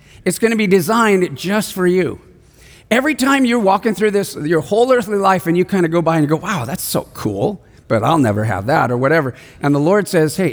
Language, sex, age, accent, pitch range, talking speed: English, male, 50-69, American, 165-225 Hz, 240 wpm